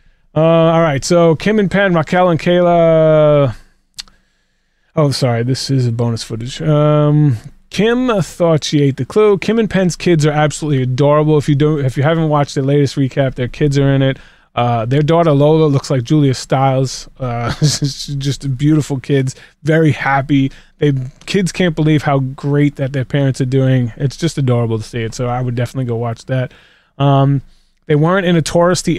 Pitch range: 135-160 Hz